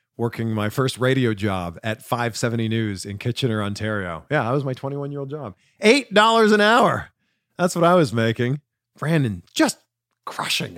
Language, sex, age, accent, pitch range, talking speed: English, male, 40-59, American, 115-175 Hz, 155 wpm